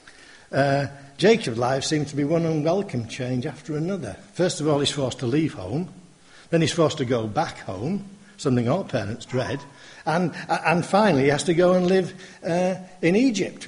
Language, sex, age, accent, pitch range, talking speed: English, male, 60-79, British, 130-170 Hz, 175 wpm